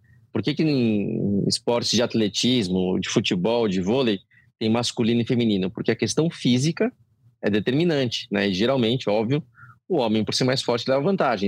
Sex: male